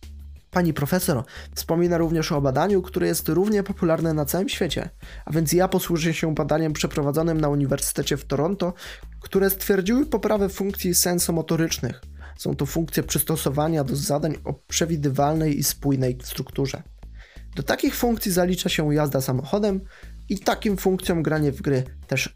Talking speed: 145 wpm